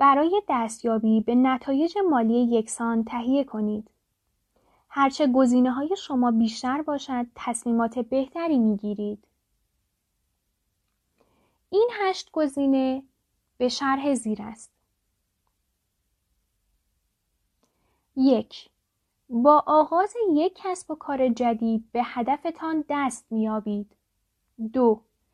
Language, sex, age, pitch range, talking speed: Persian, female, 10-29, 235-285 Hz, 85 wpm